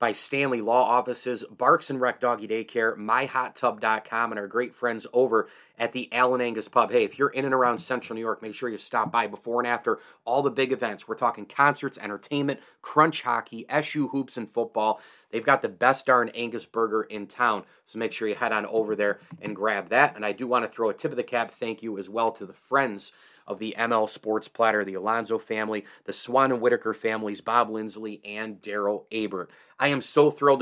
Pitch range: 110-130 Hz